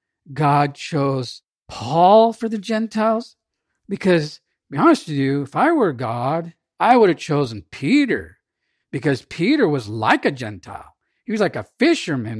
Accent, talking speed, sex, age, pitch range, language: American, 155 wpm, male, 50-69, 150-225 Hz, English